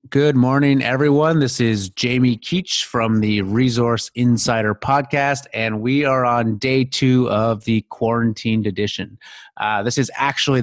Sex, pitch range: male, 115-135 Hz